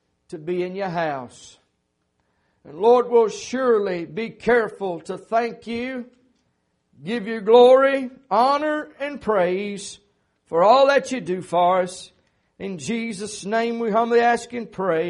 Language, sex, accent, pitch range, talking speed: English, male, American, 200-295 Hz, 140 wpm